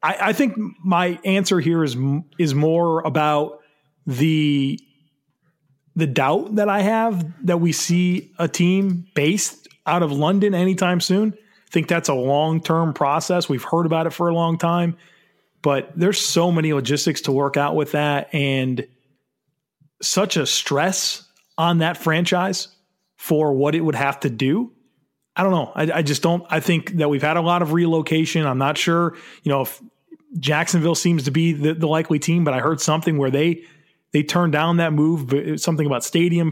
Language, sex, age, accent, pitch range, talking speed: English, male, 30-49, American, 145-175 Hz, 180 wpm